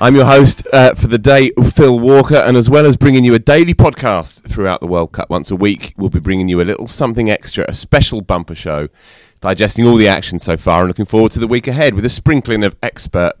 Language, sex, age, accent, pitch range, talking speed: English, male, 30-49, British, 95-130 Hz, 245 wpm